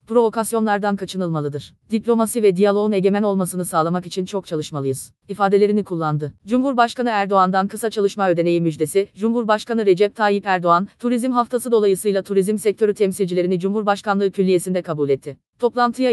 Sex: female